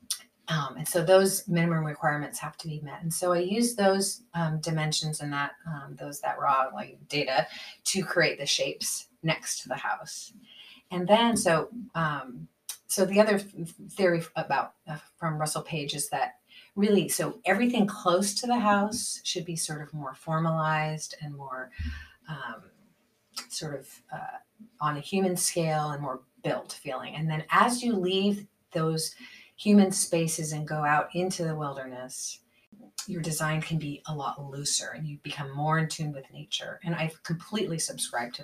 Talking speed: 170 wpm